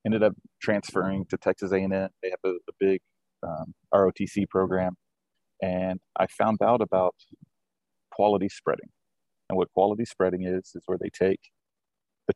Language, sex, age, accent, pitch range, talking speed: English, male, 30-49, American, 95-100 Hz, 150 wpm